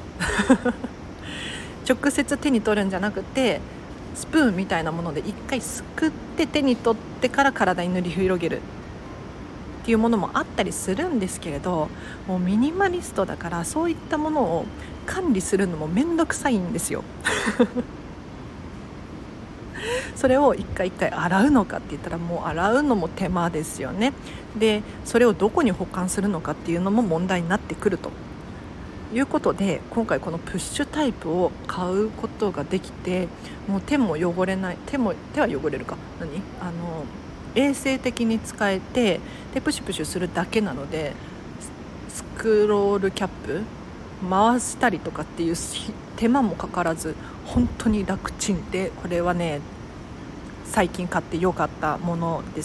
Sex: female